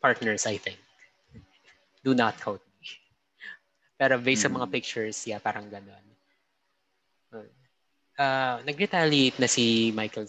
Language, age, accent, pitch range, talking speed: English, 20-39, Filipino, 105-125 Hz, 115 wpm